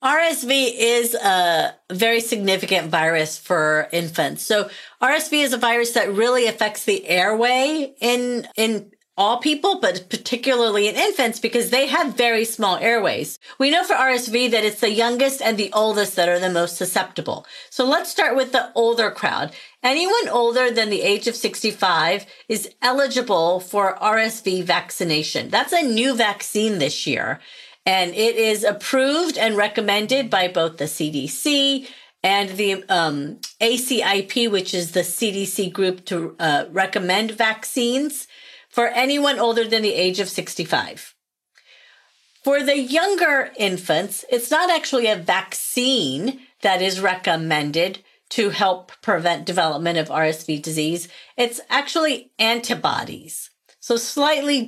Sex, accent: female, American